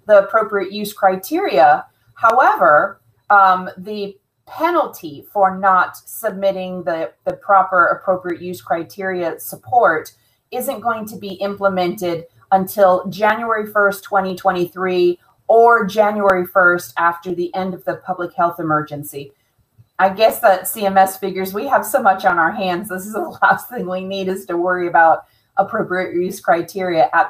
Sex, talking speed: female, 145 wpm